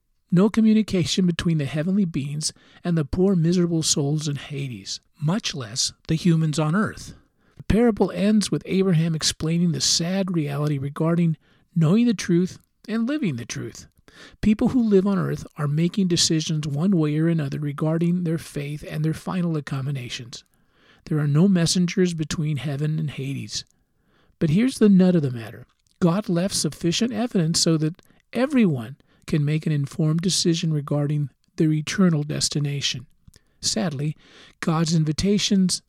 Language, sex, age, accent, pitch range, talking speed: English, male, 50-69, American, 150-190 Hz, 150 wpm